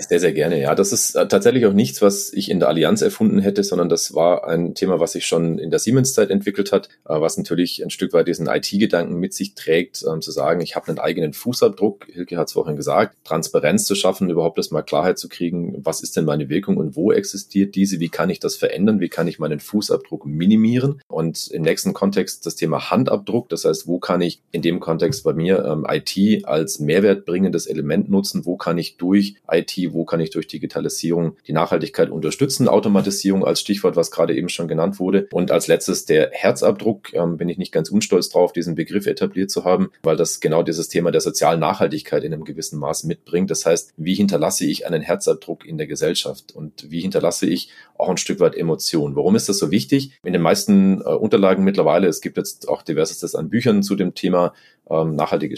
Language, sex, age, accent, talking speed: German, male, 30-49, German, 215 wpm